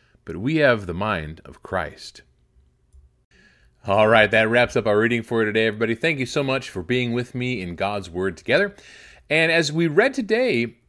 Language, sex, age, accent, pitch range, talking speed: English, male, 30-49, American, 90-125 Hz, 195 wpm